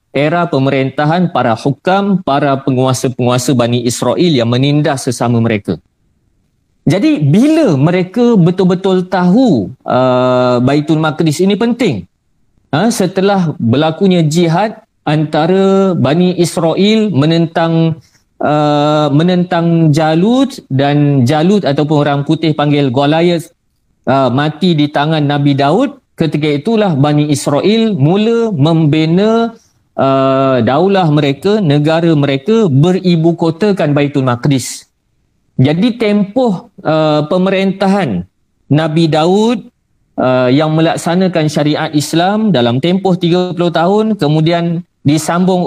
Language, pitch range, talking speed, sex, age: Malay, 145-190 Hz, 100 wpm, male, 40-59